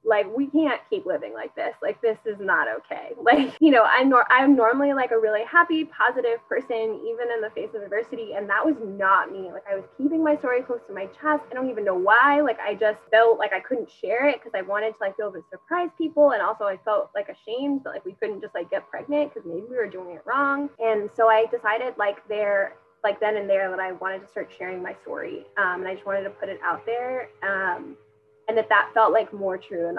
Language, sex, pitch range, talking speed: English, female, 195-280 Hz, 260 wpm